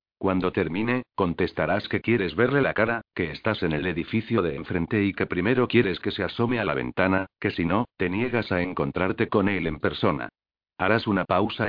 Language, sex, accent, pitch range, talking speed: Spanish, male, Spanish, 90-115 Hz, 200 wpm